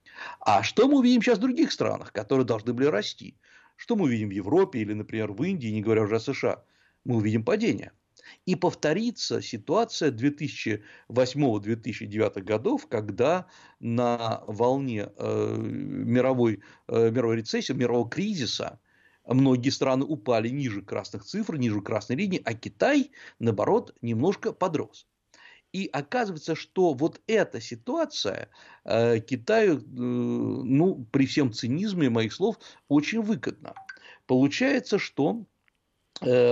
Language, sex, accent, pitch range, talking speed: Russian, male, native, 120-180 Hz, 130 wpm